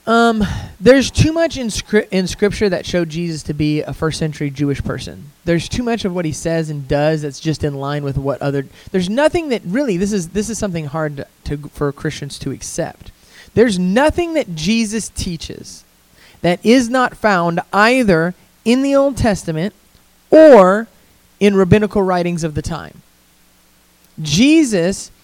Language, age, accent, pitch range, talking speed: English, 30-49, American, 155-215 Hz, 170 wpm